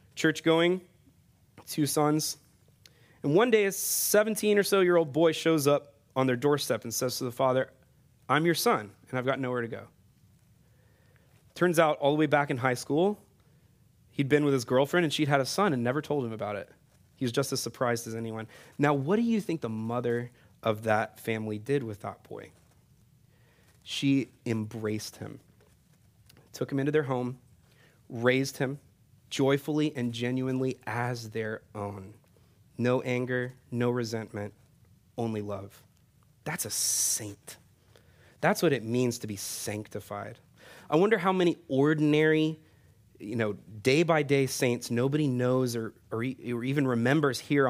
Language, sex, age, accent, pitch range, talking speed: English, male, 30-49, American, 115-150 Hz, 160 wpm